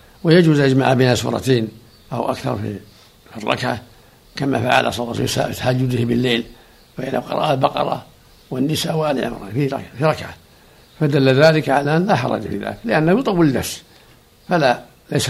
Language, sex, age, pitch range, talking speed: Arabic, male, 60-79, 120-145 Hz, 155 wpm